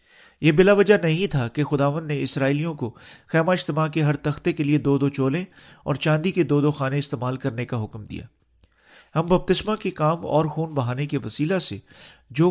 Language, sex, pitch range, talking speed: Urdu, male, 125-160 Hz, 200 wpm